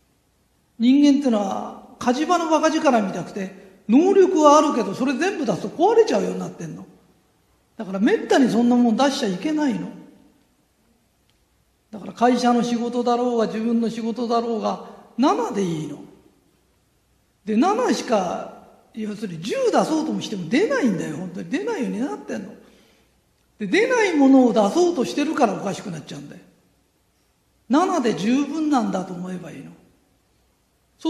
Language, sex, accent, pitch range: Japanese, male, native, 205-285 Hz